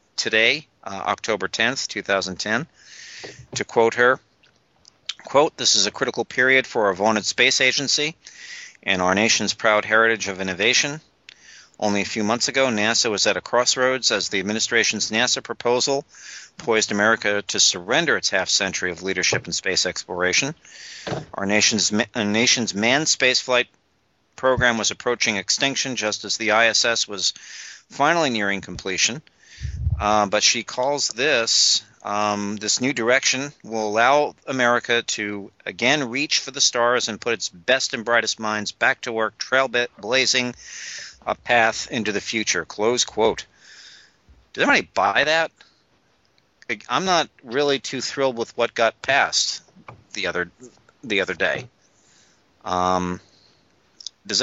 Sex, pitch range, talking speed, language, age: male, 105-125 Hz, 140 wpm, English, 50-69